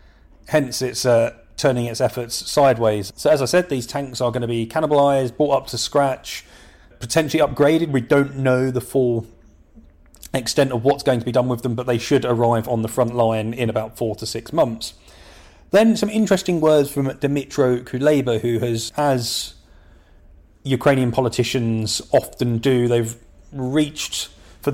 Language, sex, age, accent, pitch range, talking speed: English, male, 30-49, British, 115-140 Hz, 165 wpm